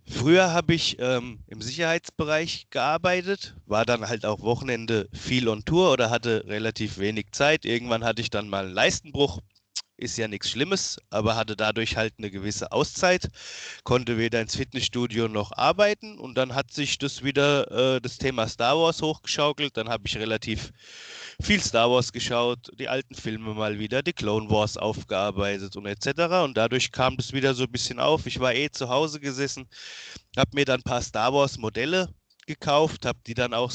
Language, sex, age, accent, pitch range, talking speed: German, male, 30-49, German, 110-145 Hz, 185 wpm